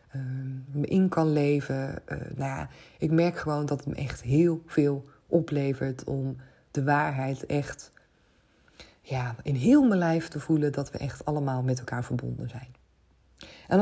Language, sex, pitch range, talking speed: Dutch, female, 135-165 Hz, 165 wpm